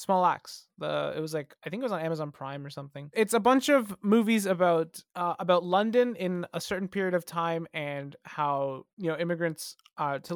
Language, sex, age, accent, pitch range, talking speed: English, male, 20-39, American, 160-215 Hz, 215 wpm